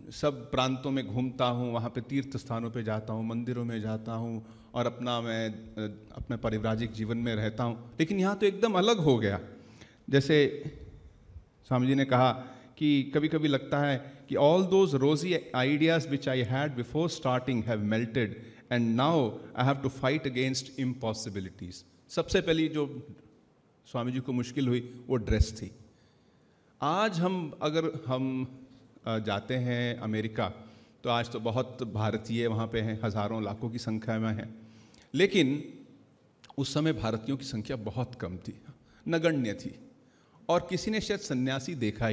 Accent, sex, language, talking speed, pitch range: native, male, Hindi, 160 wpm, 110-150 Hz